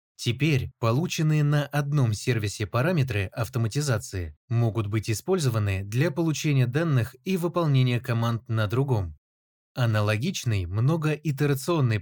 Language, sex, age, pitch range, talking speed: Russian, male, 20-39, 110-150 Hz, 100 wpm